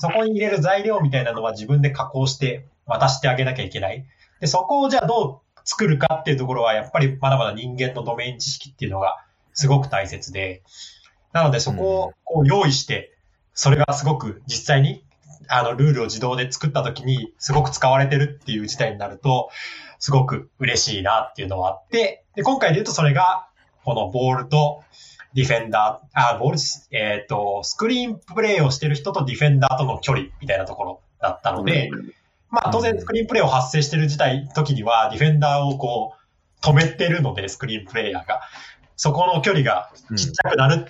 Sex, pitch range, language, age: male, 125-155 Hz, Japanese, 20-39